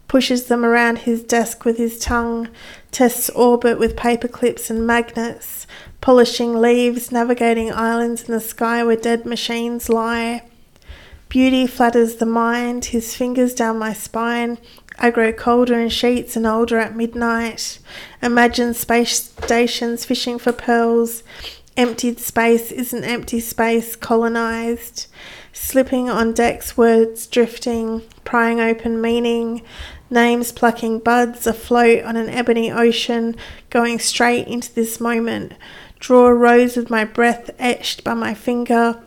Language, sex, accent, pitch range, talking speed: English, female, Australian, 230-240 Hz, 135 wpm